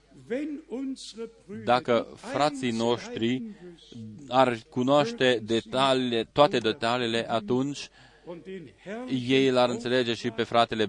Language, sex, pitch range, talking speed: Romanian, male, 115-150 Hz, 75 wpm